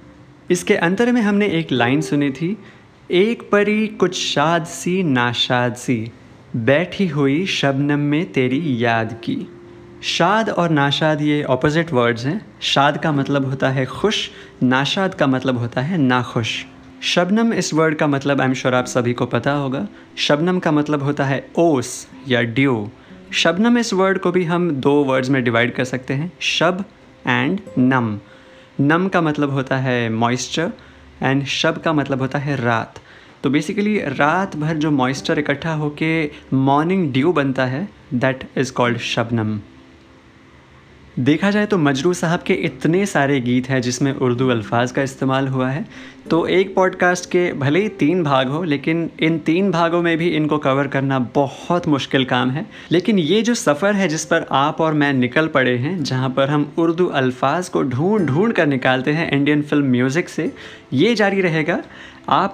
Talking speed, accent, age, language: 170 wpm, native, 20-39, Hindi